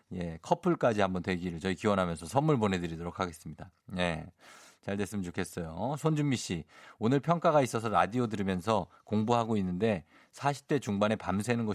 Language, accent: Korean, native